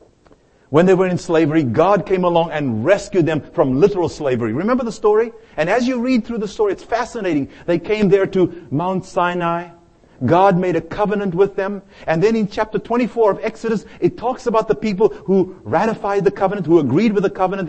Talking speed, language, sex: 200 wpm, English, male